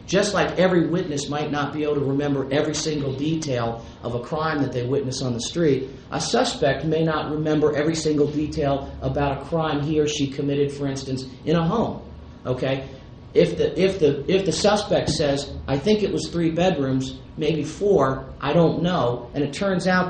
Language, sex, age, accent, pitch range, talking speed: English, male, 40-59, American, 135-165 Hz, 195 wpm